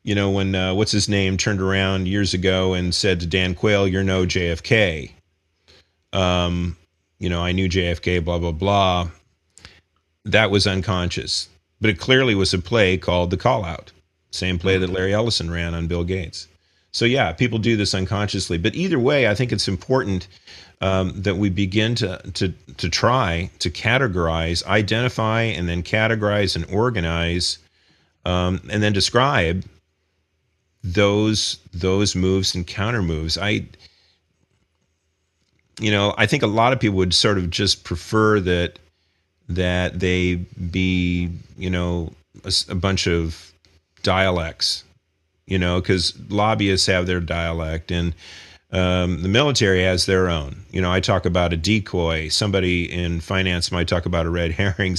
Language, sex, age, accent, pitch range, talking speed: English, male, 40-59, American, 85-100 Hz, 155 wpm